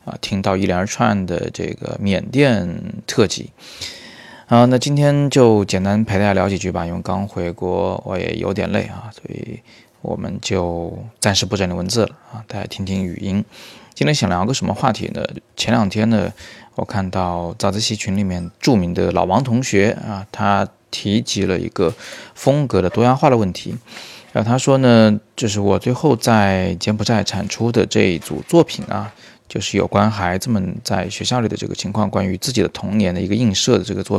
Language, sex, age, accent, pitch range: Chinese, male, 20-39, native, 95-115 Hz